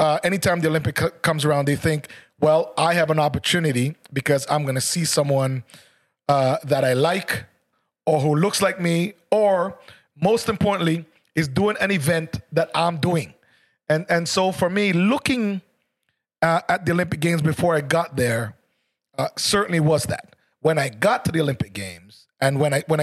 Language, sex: English, male